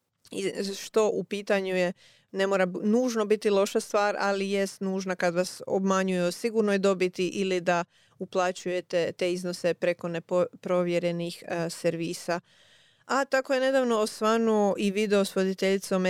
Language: Croatian